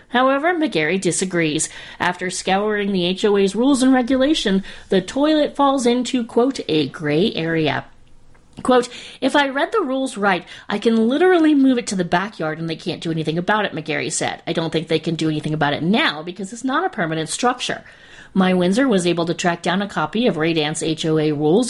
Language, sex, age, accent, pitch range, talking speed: English, female, 40-59, American, 165-240 Hz, 195 wpm